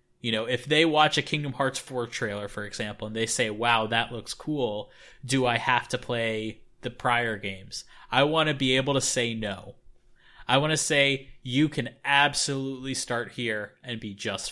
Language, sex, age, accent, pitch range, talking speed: English, male, 20-39, American, 120-155 Hz, 195 wpm